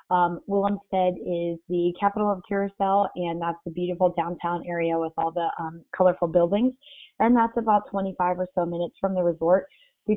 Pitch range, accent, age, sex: 175-200 Hz, American, 20-39, female